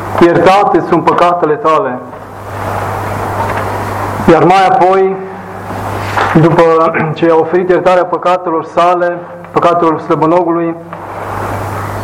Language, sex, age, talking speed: Romanian, male, 20-39, 80 wpm